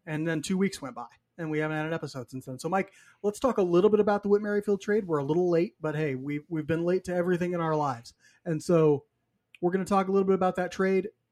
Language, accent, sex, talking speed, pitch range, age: English, American, male, 275 wpm, 155-190 Hz, 30-49